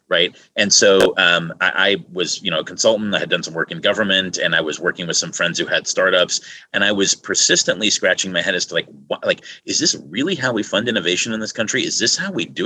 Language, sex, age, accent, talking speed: English, male, 30-49, American, 260 wpm